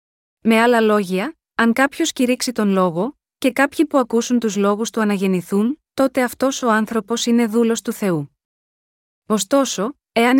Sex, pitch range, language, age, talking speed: female, 195-245 Hz, Greek, 20-39, 150 wpm